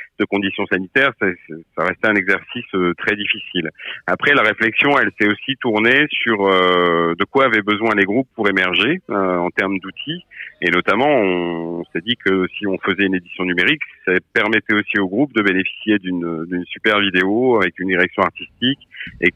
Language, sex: French, male